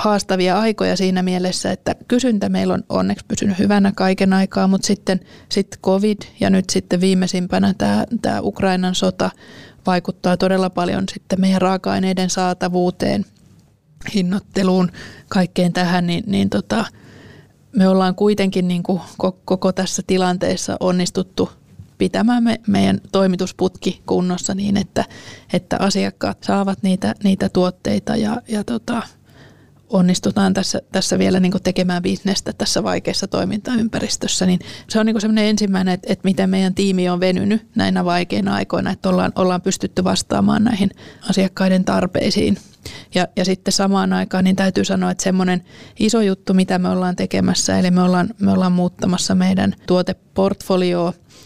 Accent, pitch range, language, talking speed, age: native, 180-195 Hz, Finnish, 140 wpm, 20-39